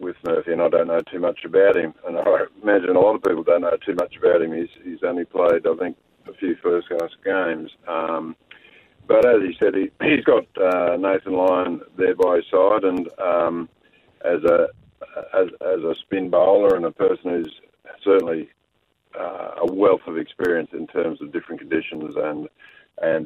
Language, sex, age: English, male, 50-69